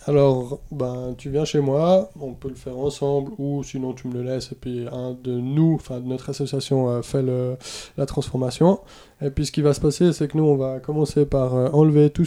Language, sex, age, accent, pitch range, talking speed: French, male, 20-39, French, 125-145 Hz, 240 wpm